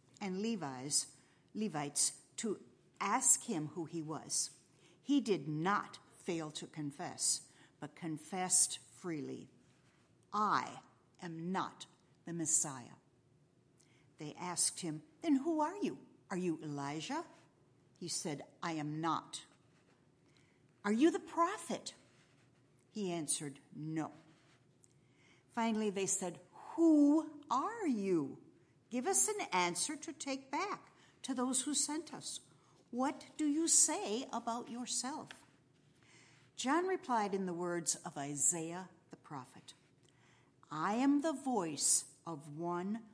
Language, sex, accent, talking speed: English, female, American, 115 wpm